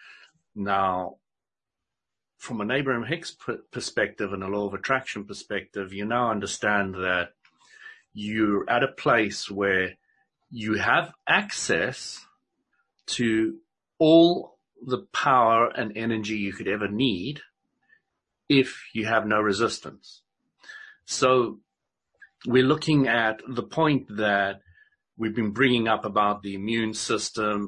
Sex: male